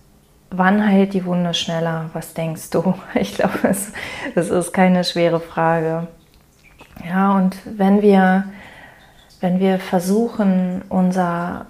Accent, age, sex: German, 30-49, female